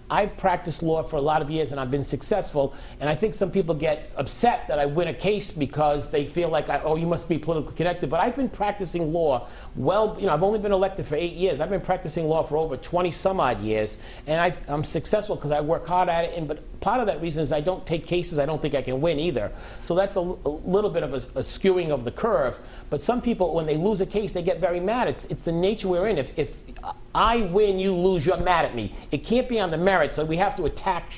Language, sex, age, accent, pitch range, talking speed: English, male, 40-59, American, 145-185 Hz, 265 wpm